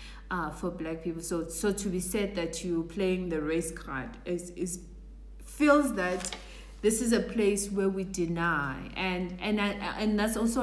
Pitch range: 165-200 Hz